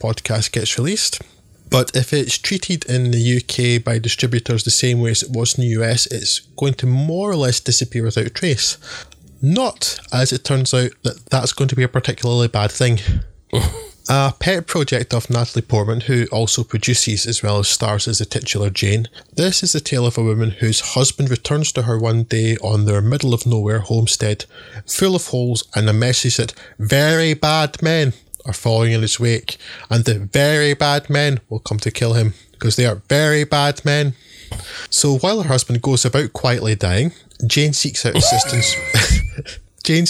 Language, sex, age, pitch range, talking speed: English, male, 20-39, 110-130 Hz, 185 wpm